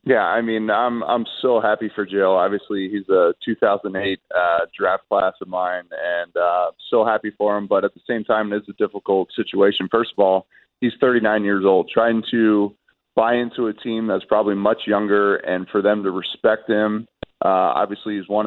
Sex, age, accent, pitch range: male, 30-49, American, 100-115 Hz